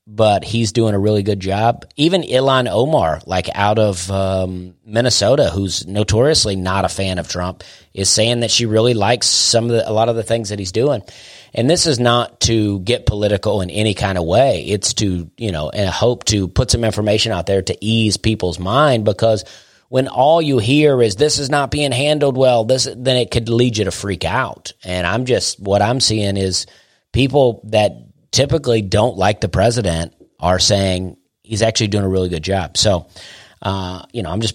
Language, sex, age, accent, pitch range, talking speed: English, male, 30-49, American, 95-120 Hz, 205 wpm